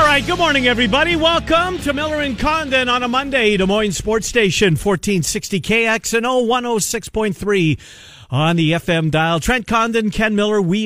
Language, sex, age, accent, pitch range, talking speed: English, male, 50-69, American, 130-205 Hz, 155 wpm